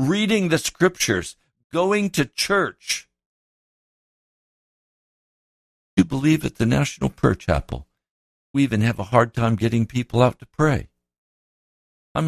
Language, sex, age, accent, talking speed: English, male, 60-79, American, 120 wpm